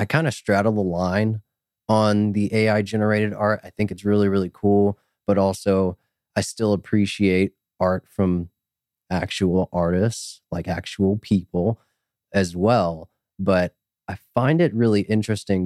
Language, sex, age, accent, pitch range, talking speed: English, male, 20-39, American, 90-110 Hz, 140 wpm